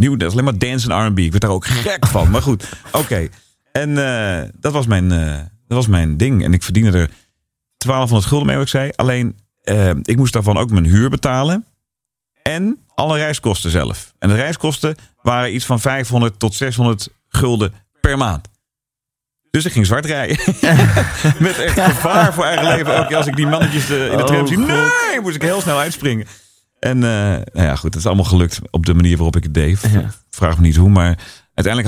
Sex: male